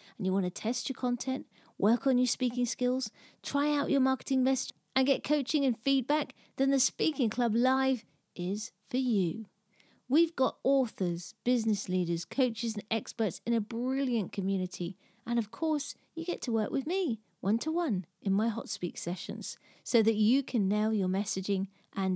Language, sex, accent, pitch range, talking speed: English, female, British, 210-275 Hz, 175 wpm